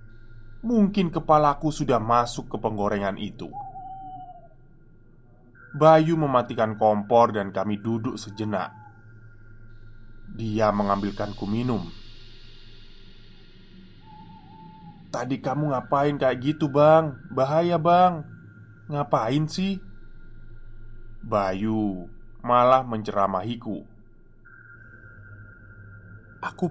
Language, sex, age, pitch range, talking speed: Indonesian, male, 20-39, 110-160 Hz, 70 wpm